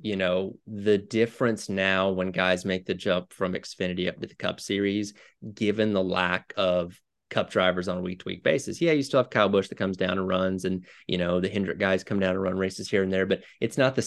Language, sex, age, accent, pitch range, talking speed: English, male, 30-49, American, 95-105 Hz, 240 wpm